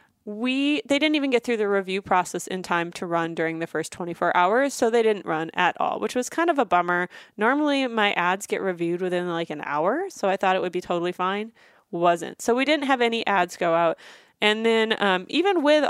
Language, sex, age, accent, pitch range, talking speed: English, female, 20-39, American, 185-255 Hz, 230 wpm